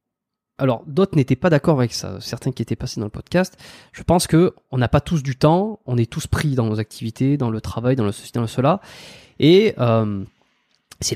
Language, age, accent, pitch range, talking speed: French, 20-39, French, 115-150 Hz, 225 wpm